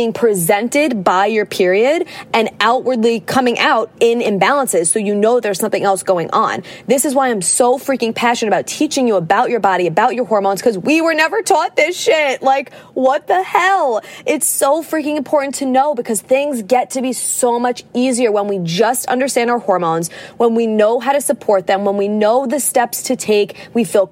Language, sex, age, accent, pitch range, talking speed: English, female, 20-39, American, 215-265 Hz, 205 wpm